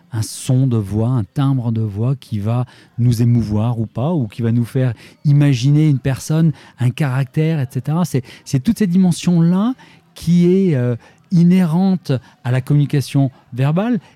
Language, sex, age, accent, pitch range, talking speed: French, male, 40-59, French, 125-170 Hz, 160 wpm